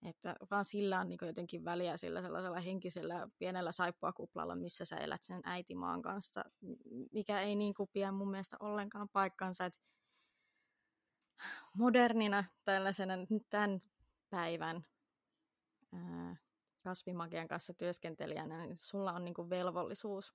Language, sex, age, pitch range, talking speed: Finnish, female, 20-39, 175-205 Hz, 120 wpm